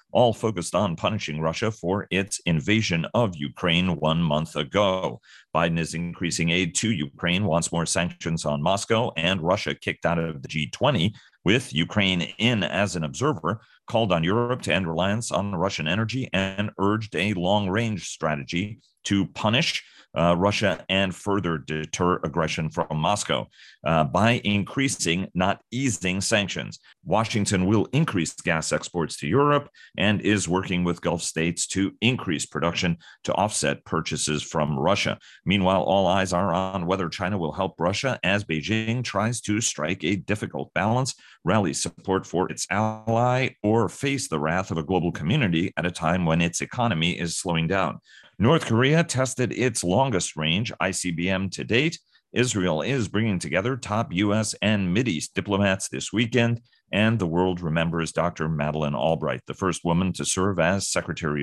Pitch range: 85-110 Hz